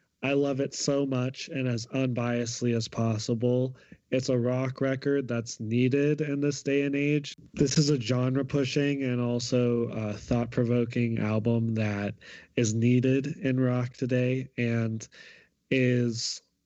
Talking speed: 135 wpm